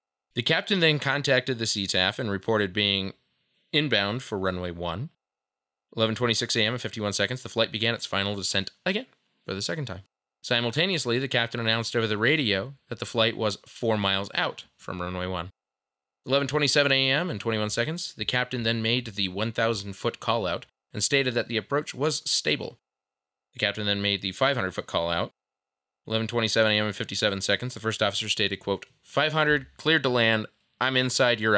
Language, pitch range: English, 100-135 Hz